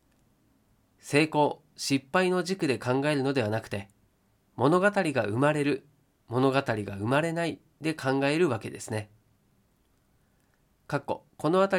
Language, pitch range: Japanese, 125-170 Hz